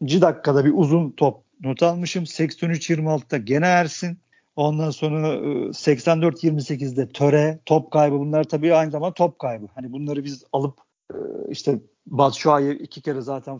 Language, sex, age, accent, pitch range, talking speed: Turkish, male, 50-69, native, 135-160 Hz, 135 wpm